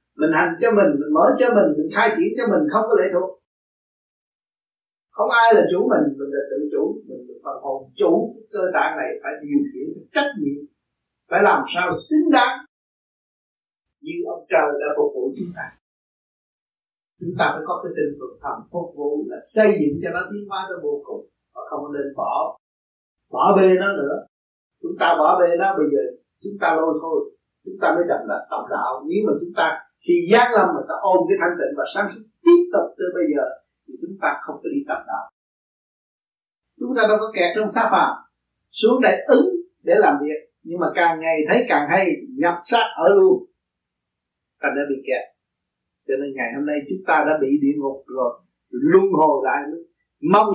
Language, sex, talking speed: Vietnamese, male, 205 wpm